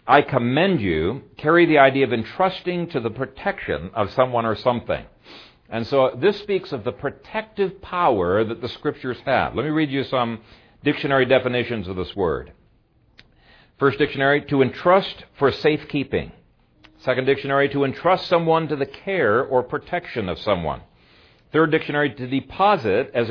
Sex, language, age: male, English, 60-79